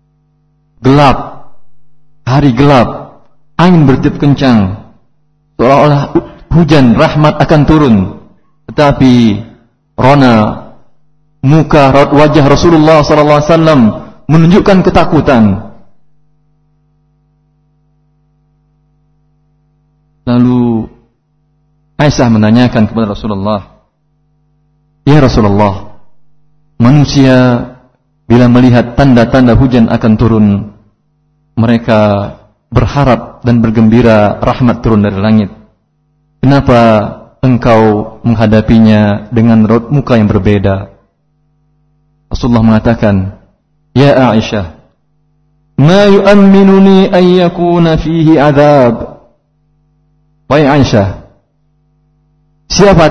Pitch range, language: 115-150 Hz, Indonesian